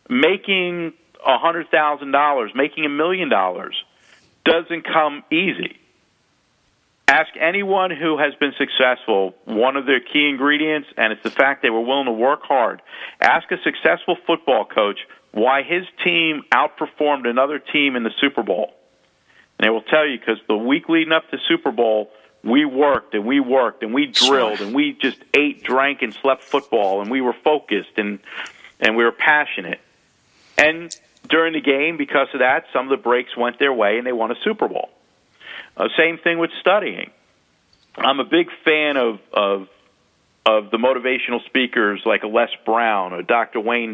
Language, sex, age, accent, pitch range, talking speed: English, male, 50-69, American, 120-170 Hz, 170 wpm